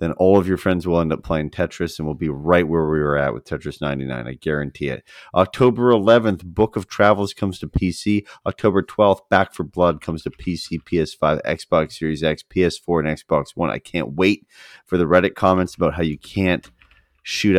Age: 30-49